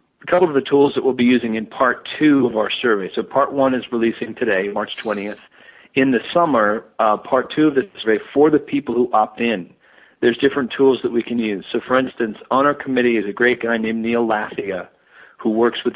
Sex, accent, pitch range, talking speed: male, American, 110-130 Hz, 230 wpm